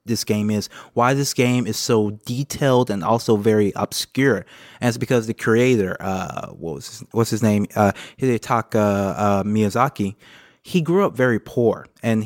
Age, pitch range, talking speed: 20-39, 100-120 Hz, 175 wpm